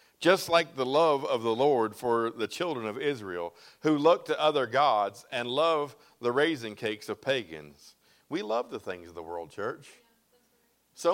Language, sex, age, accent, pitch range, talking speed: English, male, 50-69, American, 130-190 Hz, 180 wpm